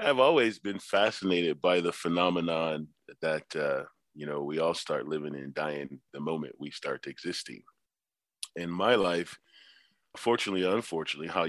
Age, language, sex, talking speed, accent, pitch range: 40-59, English, male, 150 wpm, American, 80-90 Hz